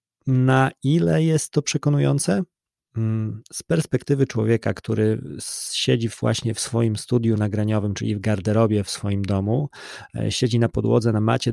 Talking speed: 135 wpm